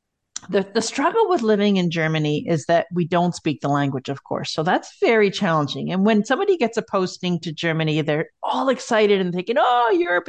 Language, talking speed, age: English, 205 wpm, 40-59